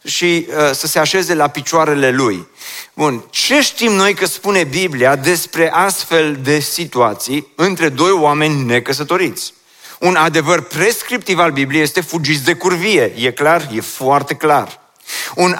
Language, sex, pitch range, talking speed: Romanian, male, 155-195 Hz, 140 wpm